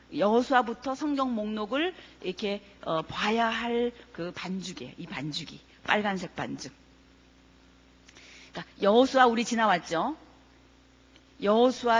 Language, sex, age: Korean, female, 40-59